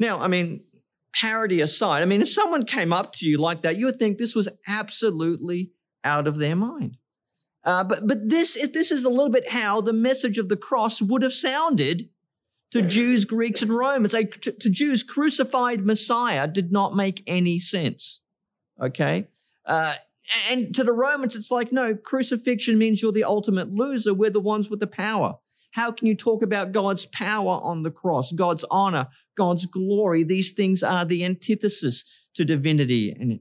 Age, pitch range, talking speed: 40-59, 165-225 Hz, 185 wpm